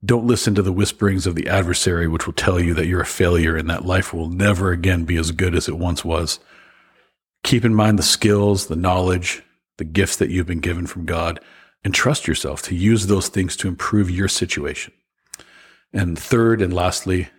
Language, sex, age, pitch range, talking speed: English, male, 40-59, 85-105 Hz, 205 wpm